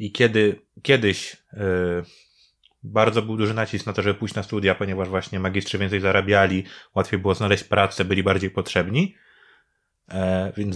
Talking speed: 140 wpm